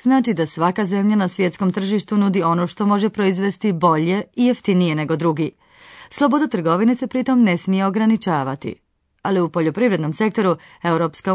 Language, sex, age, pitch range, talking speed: Croatian, female, 30-49, 165-205 Hz, 155 wpm